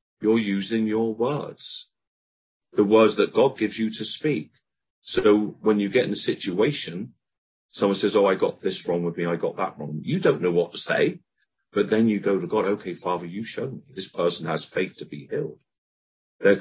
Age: 50-69